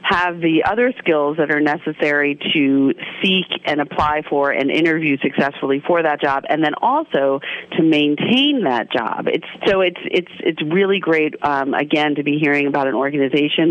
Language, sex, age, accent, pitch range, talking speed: English, female, 40-59, American, 130-155 Hz, 175 wpm